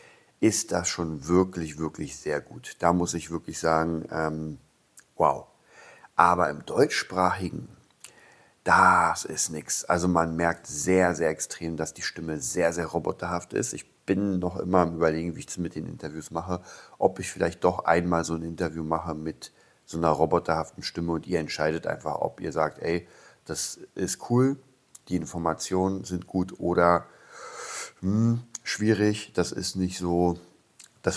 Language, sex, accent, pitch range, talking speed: German, male, German, 80-95 Hz, 160 wpm